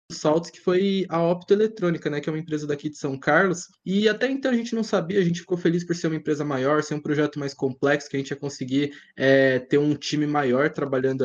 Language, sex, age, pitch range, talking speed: Portuguese, male, 20-39, 140-180 Hz, 250 wpm